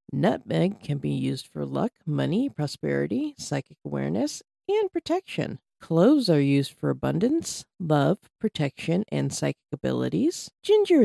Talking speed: 125 wpm